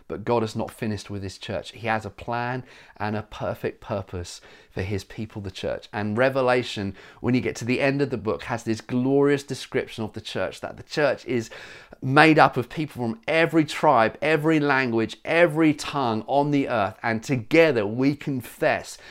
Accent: British